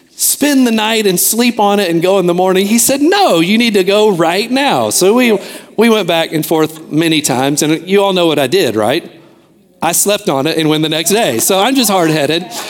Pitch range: 145-195 Hz